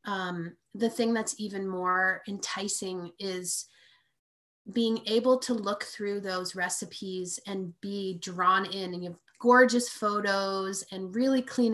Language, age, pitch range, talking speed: English, 30-49, 185-220 Hz, 140 wpm